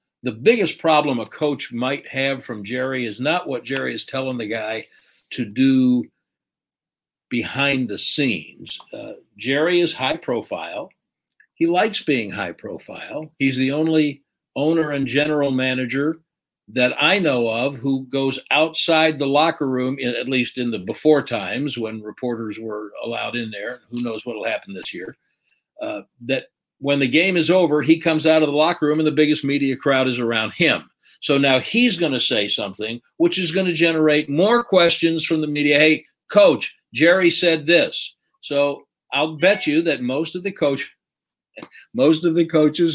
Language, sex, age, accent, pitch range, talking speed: English, male, 60-79, American, 125-160 Hz, 175 wpm